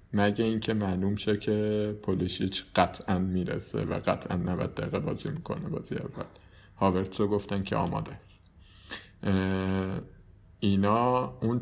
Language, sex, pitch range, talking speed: Persian, male, 95-125 Hz, 120 wpm